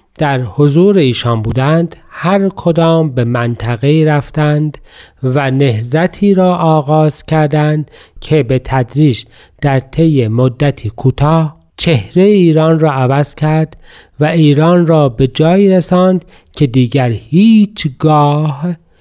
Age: 40-59